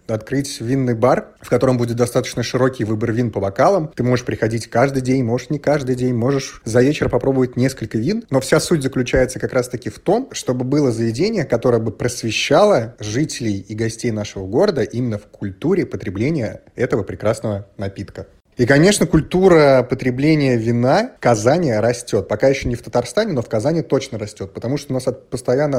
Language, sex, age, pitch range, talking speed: Russian, male, 30-49, 110-135 Hz, 180 wpm